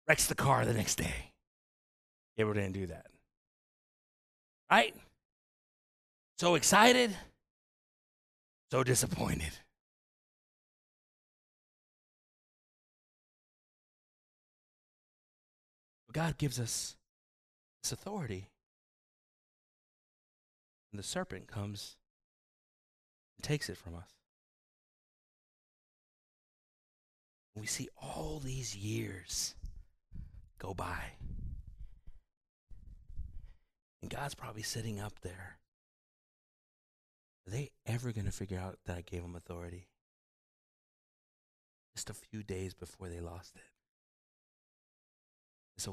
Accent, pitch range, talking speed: American, 85-115 Hz, 80 wpm